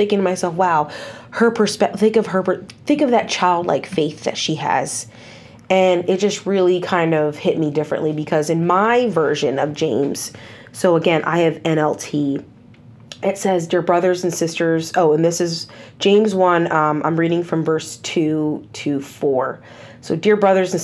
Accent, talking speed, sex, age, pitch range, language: American, 175 wpm, female, 30-49, 150-180 Hz, English